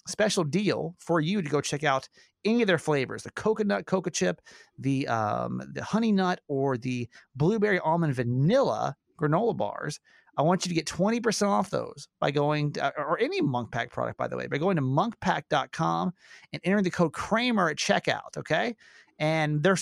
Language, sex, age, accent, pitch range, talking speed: English, male, 30-49, American, 140-190 Hz, 190 wpm